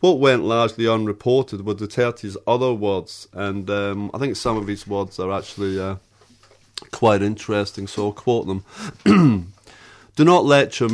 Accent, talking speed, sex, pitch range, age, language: British, 155 wpm, male, 100-125 Hz, 30-49, English